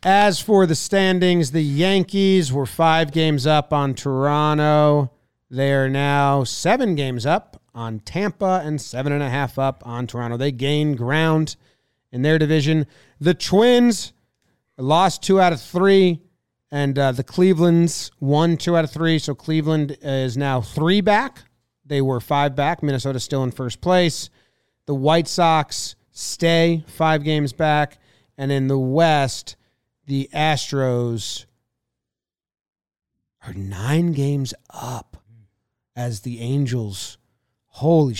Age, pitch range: 30-49, 120-155 Hz